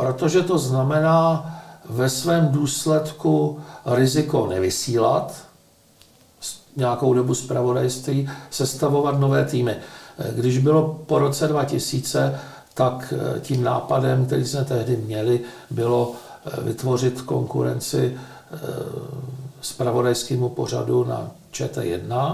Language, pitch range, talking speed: Czech, 120-145 Hz, 90 wpm